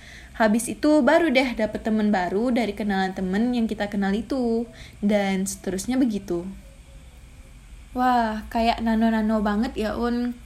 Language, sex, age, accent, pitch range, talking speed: Indonesian, female, 20-39, native, 195-245 Hz, 130 wpm